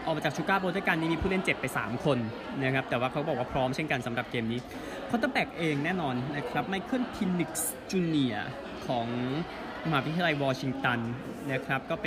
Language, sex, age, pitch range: Thai, male, 20-39, 125-165 Hz